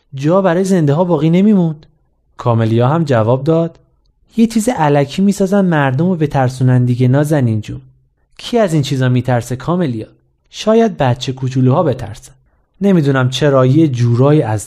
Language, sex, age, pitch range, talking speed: Persian, male, 30-49, 120-170 Hz, 140 wpm